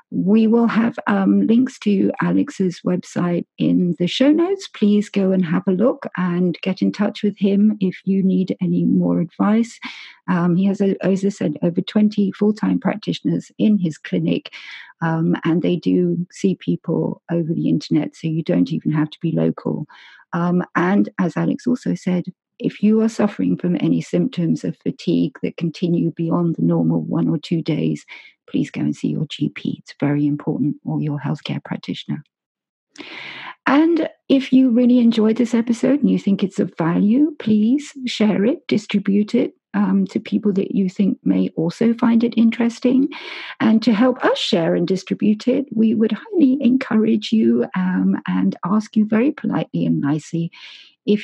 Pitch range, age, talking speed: 165-225 Hz, 50-69, 175 wpm